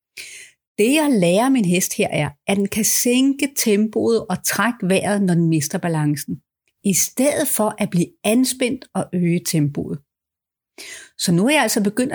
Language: Danish